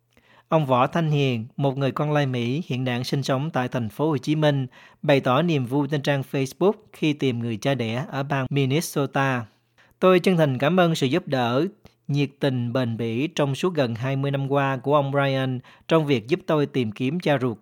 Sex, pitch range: male, 130-155 Hz